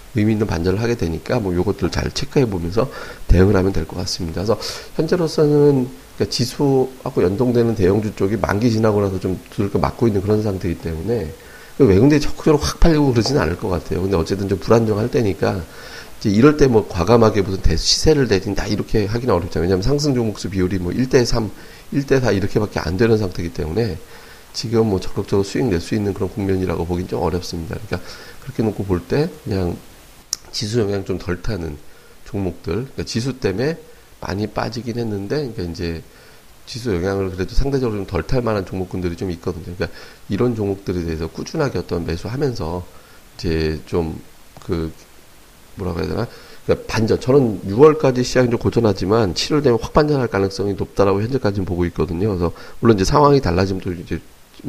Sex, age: male, 40-59